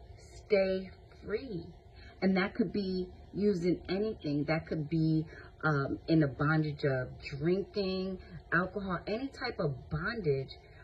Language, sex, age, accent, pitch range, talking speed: English, female, 30-49, American, 150-190 Hz, 120 wpm